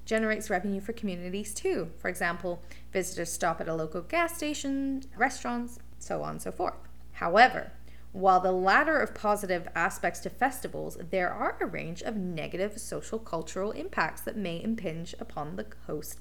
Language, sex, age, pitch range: English, female, 20-39, 175-240 Hz